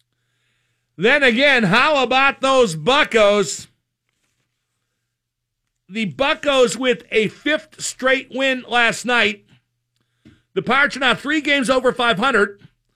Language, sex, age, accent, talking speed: English, male, 50-69, American, 110 wpm